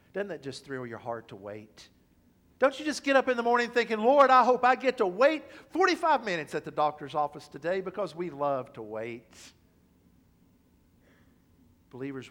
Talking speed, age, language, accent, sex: 180 wpm, 50-69, English, American, male